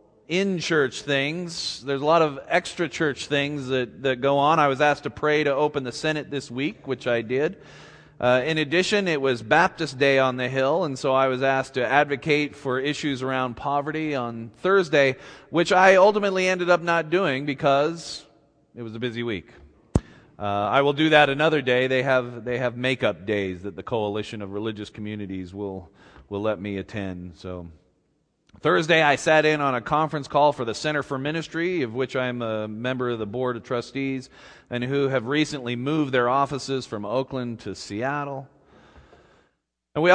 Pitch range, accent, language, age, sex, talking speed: 110-150 Hz, American, English, 30-49, male, 190 wpm